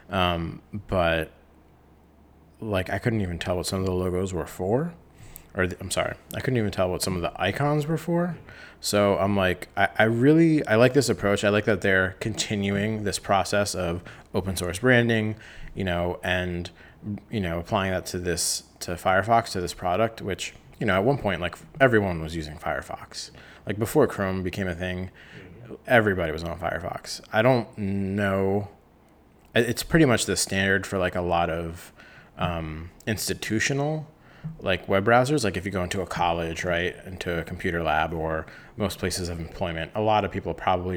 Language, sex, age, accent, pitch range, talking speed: English, male, 20-39, American, 85-105 Hz, 180 wpm